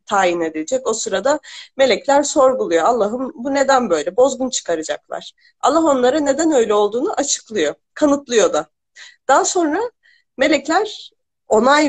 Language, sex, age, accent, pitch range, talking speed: Turkish, female, 40-59, native, 195-285 Hz, 120 wpm